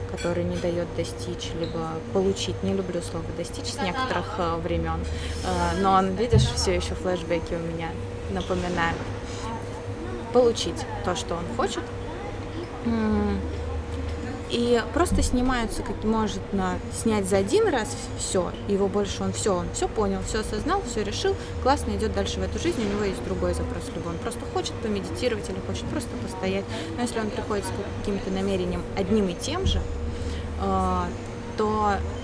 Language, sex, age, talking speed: Russian, female, 20-39, 150 wpm